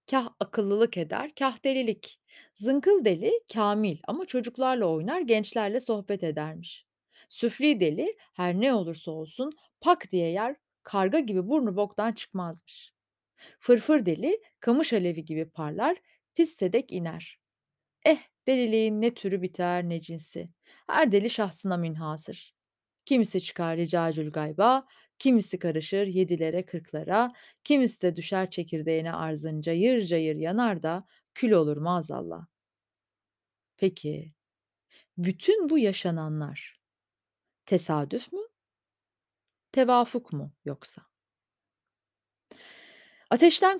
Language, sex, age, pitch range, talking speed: Turkish, female, 30-49, 165-260 Hz, 105 wpm